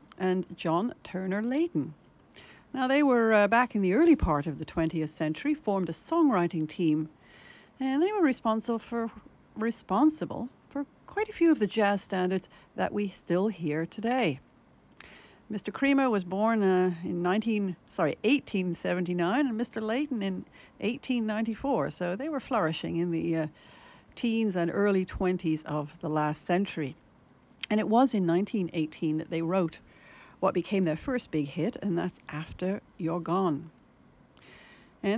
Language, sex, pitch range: English, female, 165-230 Hz